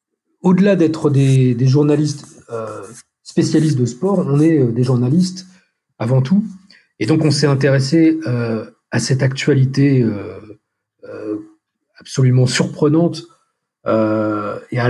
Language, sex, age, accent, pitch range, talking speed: French, male, 40-59, French, 120-150 Hz, 125 wpm